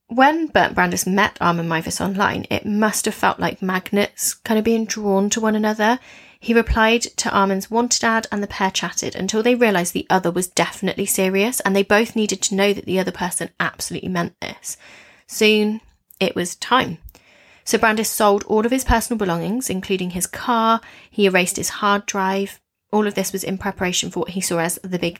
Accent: British